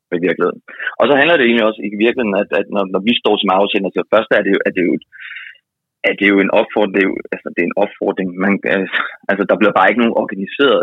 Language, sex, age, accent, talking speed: Danish, male, 20-39, native, 225 wpm